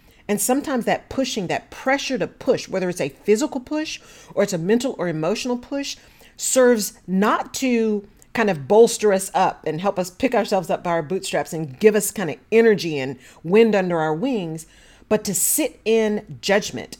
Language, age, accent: English, 40-59, American